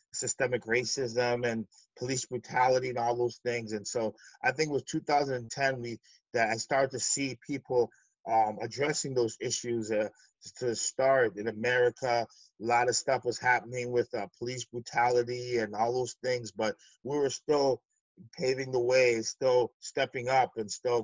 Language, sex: English, male